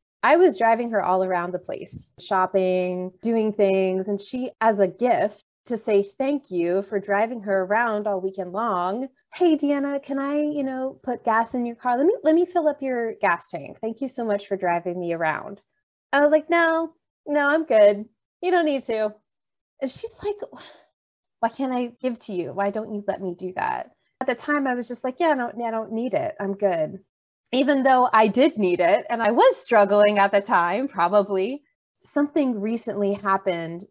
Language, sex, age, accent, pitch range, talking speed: English, female, 20-39, American, 190-275 Hz, 205 wpm